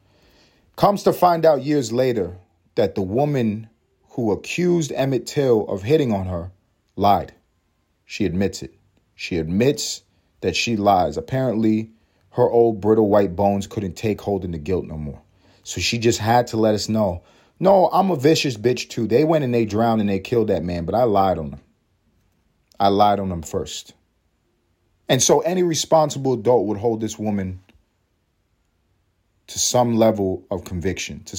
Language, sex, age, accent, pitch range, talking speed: English, male, 40-59, American, 95-115 Hz, 170 wpm